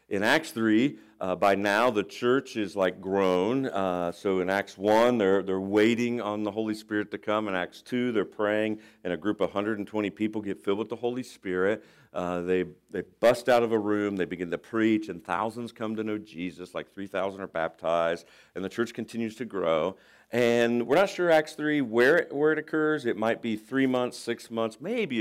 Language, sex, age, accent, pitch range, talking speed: English, male, 50-69, American, 95-120 Hz, 210 wpm